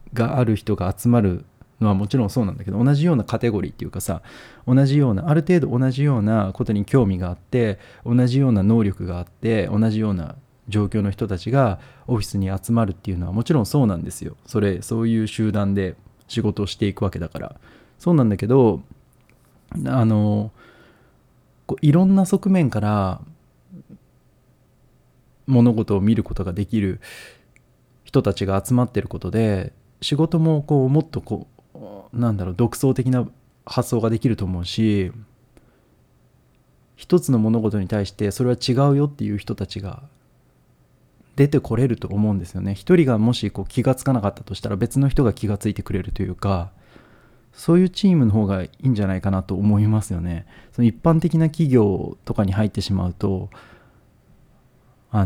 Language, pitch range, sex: Japanese, 100-130 Hz, male